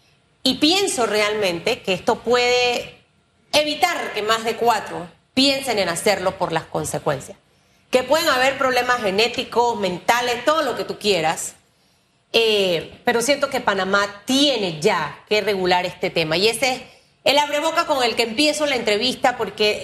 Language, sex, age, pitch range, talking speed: Spanish, female, 30-49, 195-265 Hz, 155 wpm